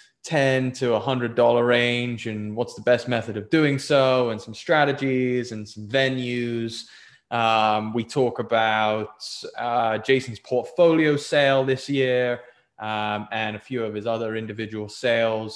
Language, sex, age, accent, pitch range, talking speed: English, male, 20-39, British, 115-140 Hz, 145 wpm